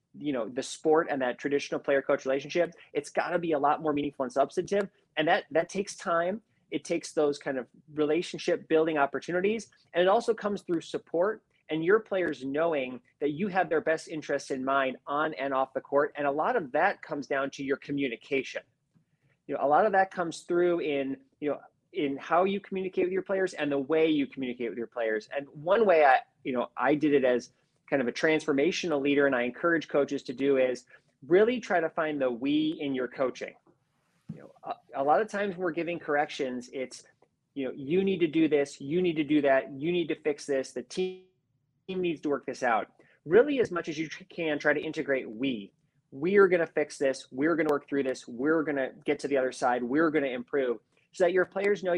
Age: 30-49